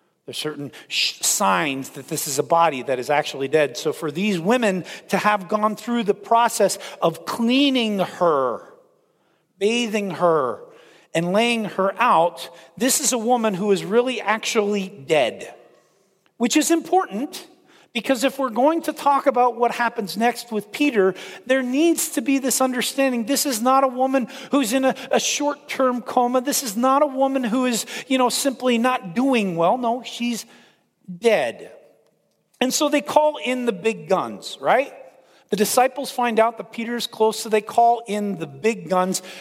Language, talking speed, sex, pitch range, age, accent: English, 170 wpm, male, 190-265 Hz, 40-59, American